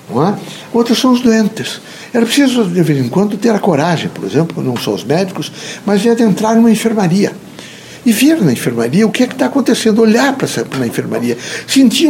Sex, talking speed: male, 205 wpm